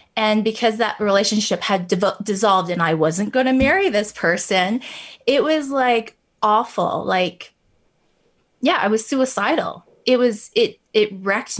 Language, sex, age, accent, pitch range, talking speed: English, female, 20-39, American, 185-245 Hz, 145 wpm